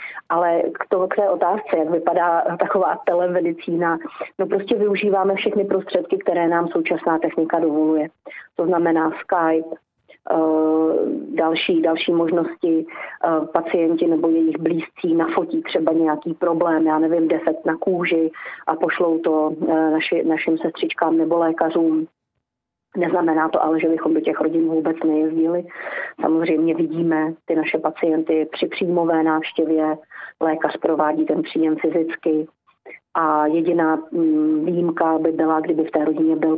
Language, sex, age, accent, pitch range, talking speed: Czech, female, 30-49, native, 160-170 Hz, 130 wpm